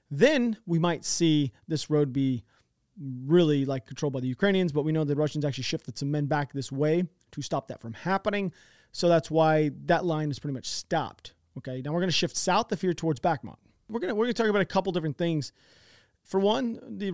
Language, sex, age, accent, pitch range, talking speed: English, male, 30-49, American, 145-185 Hz, 230 wpm